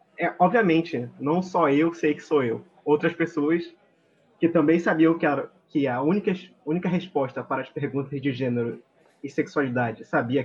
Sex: male